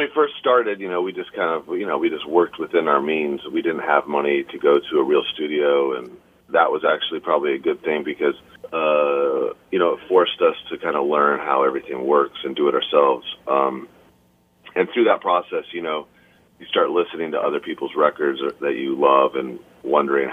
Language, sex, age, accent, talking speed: English, male, 30-49, American, 215 wpm